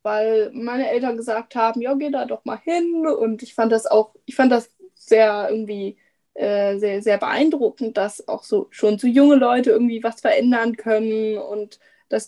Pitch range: 215-245 Hz